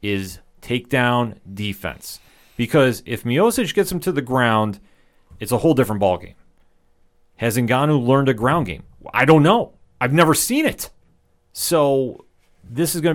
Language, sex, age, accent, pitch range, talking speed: English, male, 30-49, American, 95-130 Hz, 155 wpm